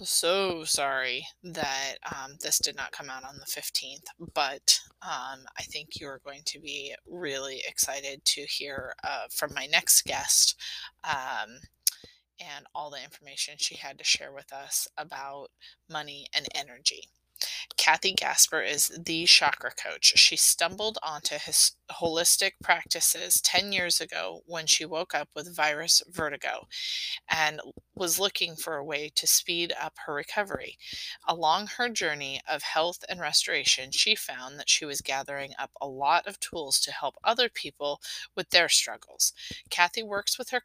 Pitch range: 145-185 Hz